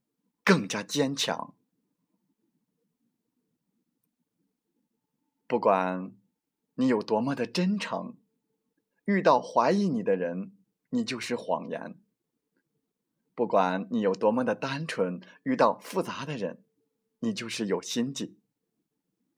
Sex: male